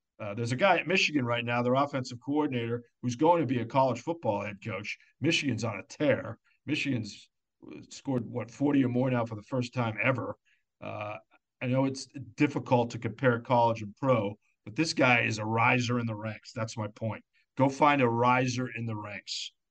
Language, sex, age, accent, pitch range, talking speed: English, male, 50-69, American, 115-140 Hz, 200 wpm